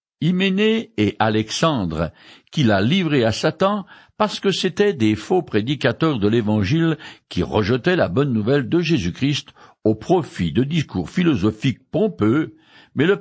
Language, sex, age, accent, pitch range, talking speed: French, male, 60-79, French, 115-185 Hz, 140 wpm